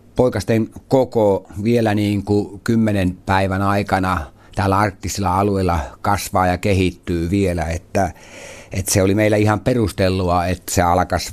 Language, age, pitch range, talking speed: Finnish, 60-79, 90-110 Hz, 120 wpm